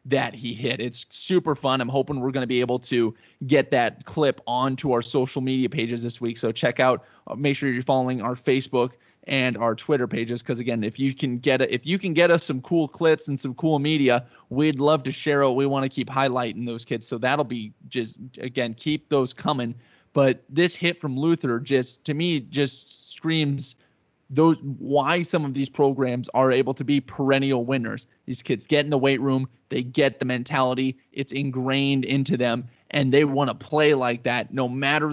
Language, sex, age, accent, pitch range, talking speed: English, male, 20-39, American, 125-145 Hz, 205 wpm